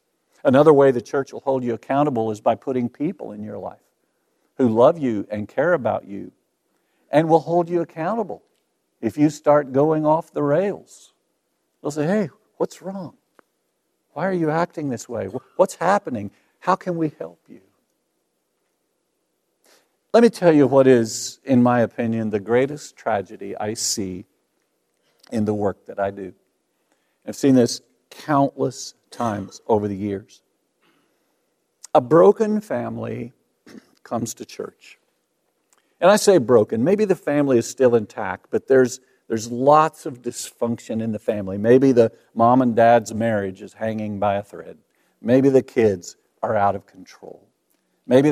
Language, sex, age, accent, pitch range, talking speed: English, male, 50-69, American, 110-150 Hz, 155 wpm